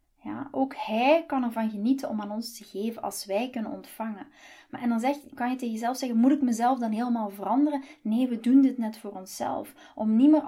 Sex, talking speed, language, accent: female, 210 wpm, Dutch, Dutch